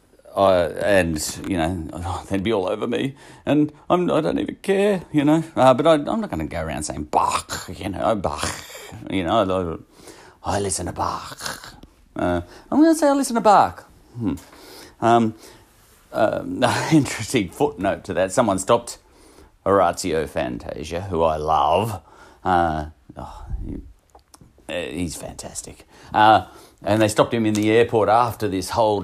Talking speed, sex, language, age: 175 wpm, male, English, 40-59